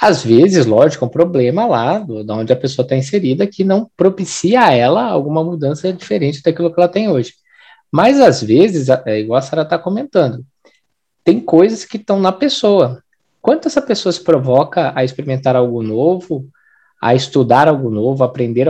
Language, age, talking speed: Portuguese, 20-39, 180 wpm